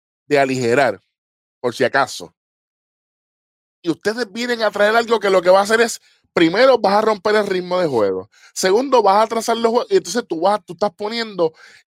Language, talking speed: Spanish, 195 wpm